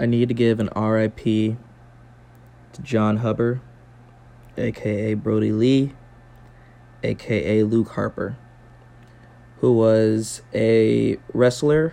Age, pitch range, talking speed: 20-39, 110-125 Hz, 95 wpm